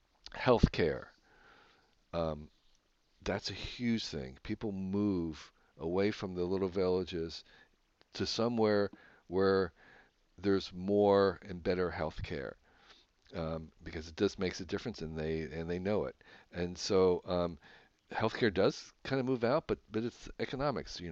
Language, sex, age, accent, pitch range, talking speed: English, male, 50-69, American, 85-105 Hz, 140 wpm